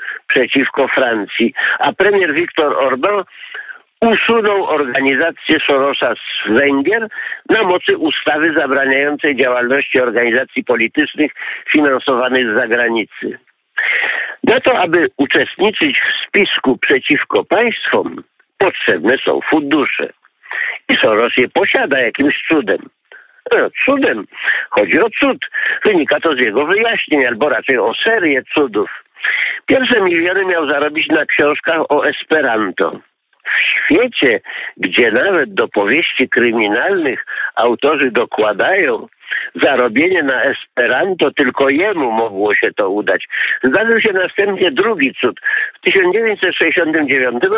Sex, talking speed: male, 110 wpm